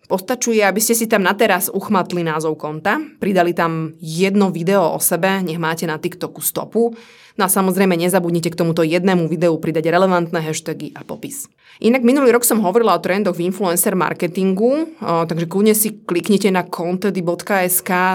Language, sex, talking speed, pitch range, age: Slovak, female, 170 wpm, 165-205 Hz, 20-39